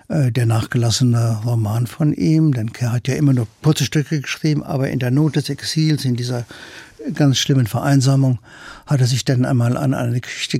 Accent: German